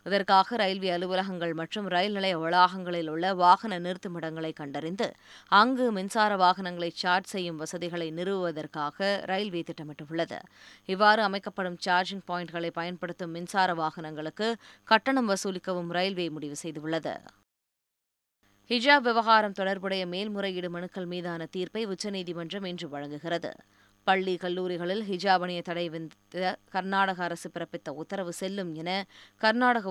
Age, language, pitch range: 20-39, Tamil, 170-200 Hz